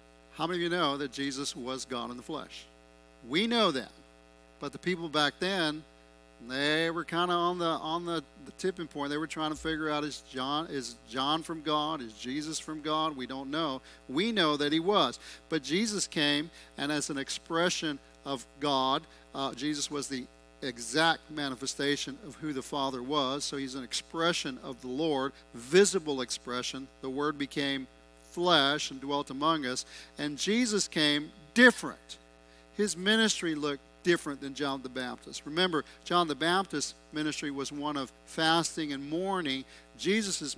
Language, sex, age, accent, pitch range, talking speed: English, male, 40-59, American, 130-160 Hz, 170 wpm